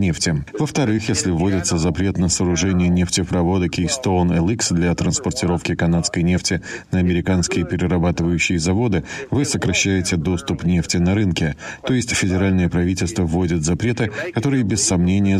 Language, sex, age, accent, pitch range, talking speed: Russian, male, 30-49, native, 85-105 Hz, 130 wpm